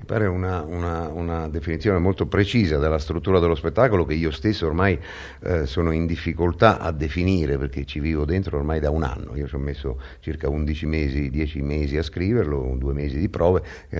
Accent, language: native, Italian